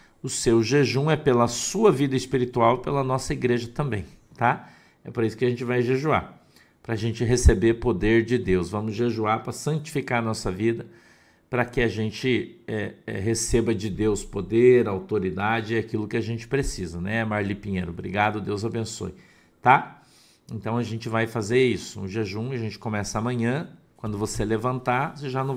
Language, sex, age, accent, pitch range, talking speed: Portuguese, male, 50-69, Brazilian, 115-135 Hz, 175 wpm